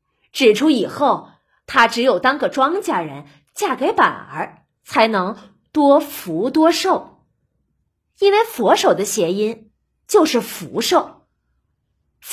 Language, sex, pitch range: Chinese, female, 225-345 Hz